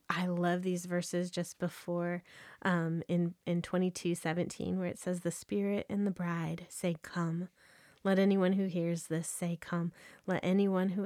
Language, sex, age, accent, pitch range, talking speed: English, female, 20-39, American, 170-195 Hz, 165 wpm